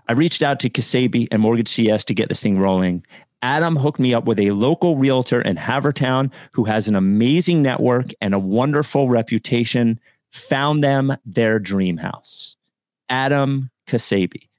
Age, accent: 30-49, American